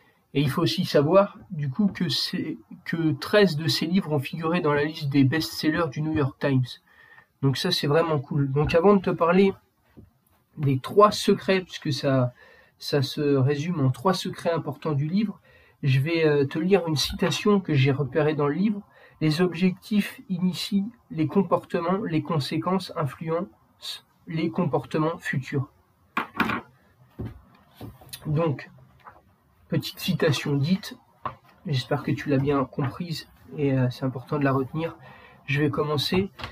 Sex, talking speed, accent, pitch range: male, 155 wpm, French, 145-185 Hz